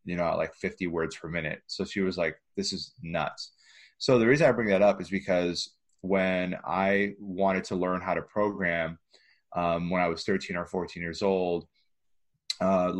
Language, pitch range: English, 85-95 Hz